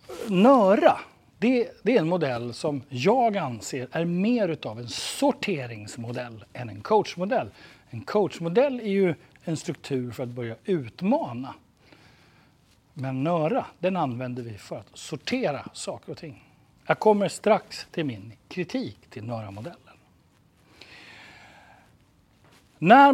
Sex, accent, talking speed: male, native, 120 wpm